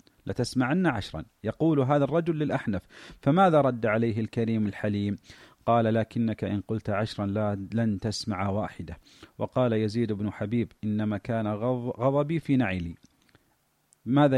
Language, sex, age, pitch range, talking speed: Arabic, male, 40-59, 110-140 Hz, 120 wpm